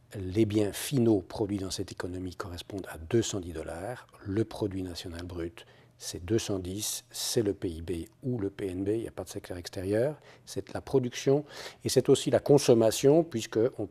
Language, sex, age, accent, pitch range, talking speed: French, male, 50-69, French, 100-130 Hz, 170 wpm